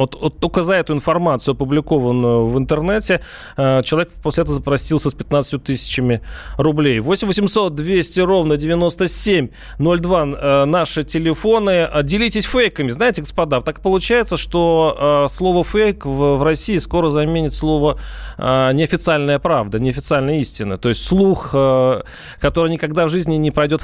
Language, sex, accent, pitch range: Russian, male, native, 135-170 Hz